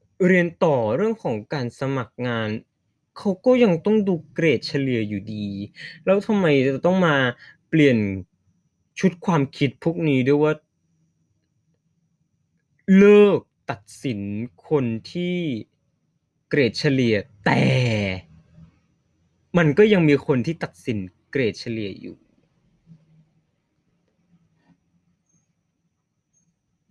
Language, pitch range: Thai, 120-160 Hz